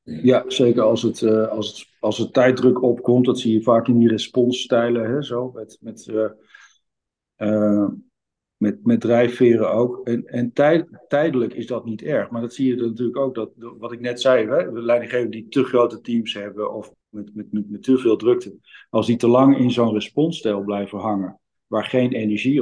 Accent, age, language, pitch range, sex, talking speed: Dutch, 50-69, Dutch, 105-125 Hz, male, 160 wpm